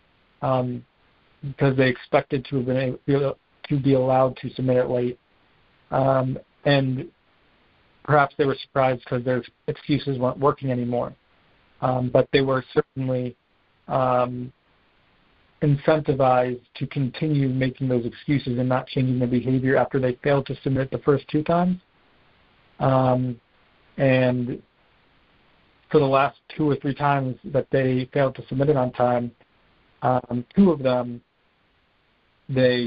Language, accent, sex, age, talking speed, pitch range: English, American, male, 50-69, 130 wpm, 125-140 Hz